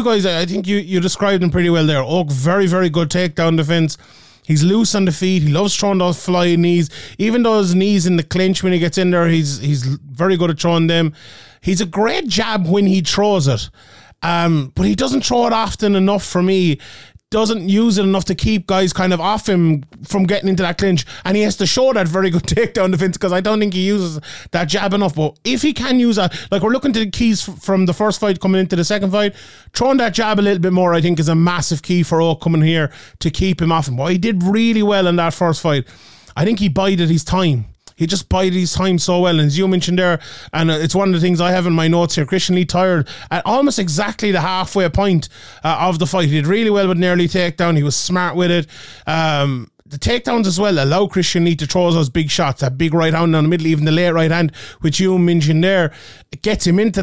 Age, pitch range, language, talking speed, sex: 30-49, 165-200 Hz, English, 250 wpm, male